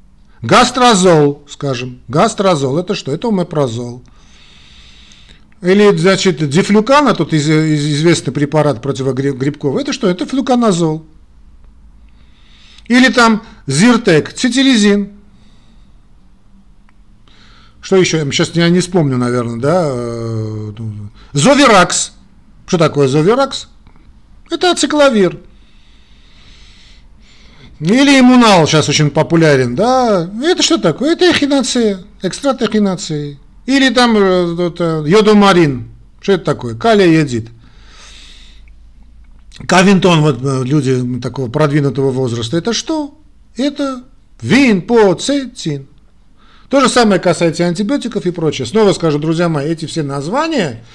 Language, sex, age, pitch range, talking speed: Russian, male, 50-69, 135-220 Hz, 95 wpm